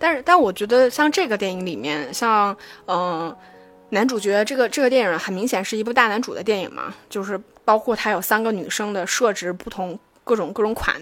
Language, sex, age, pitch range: Chinese, female, 20-39, 195-255 Hz